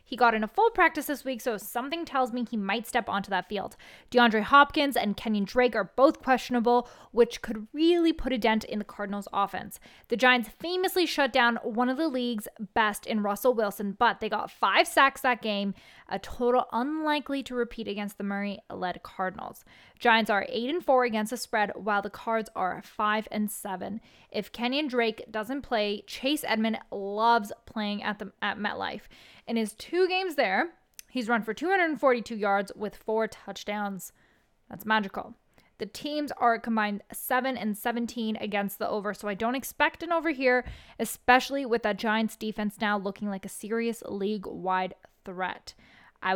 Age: 10-29